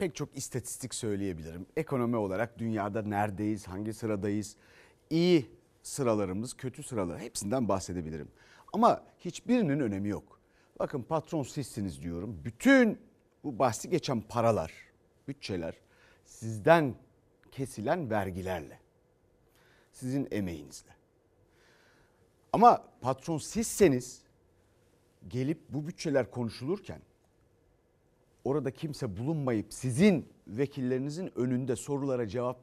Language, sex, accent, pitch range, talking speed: Turkish, male, native, 100-145 Hz, 90 wpm